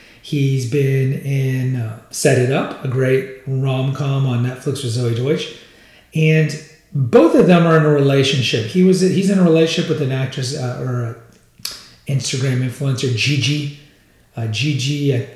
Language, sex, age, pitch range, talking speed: English, male, 40-59, 130-165 Hz, 165 wpm